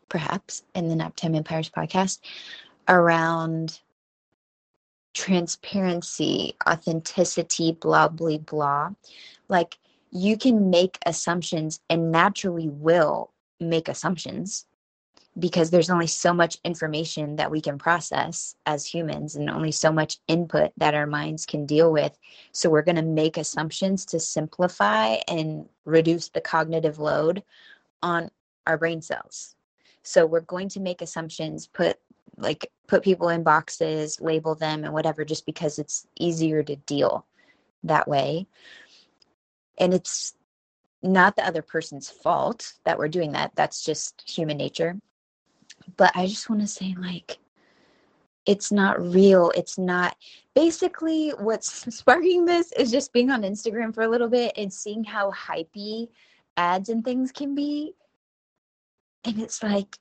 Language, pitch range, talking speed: English, 160-200 Hz, 140 wpm